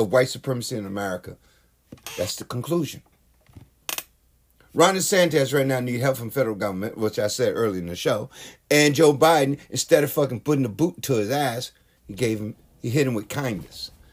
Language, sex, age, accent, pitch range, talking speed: English, male, 50-69, American, 105-150 Hz, 185 wpm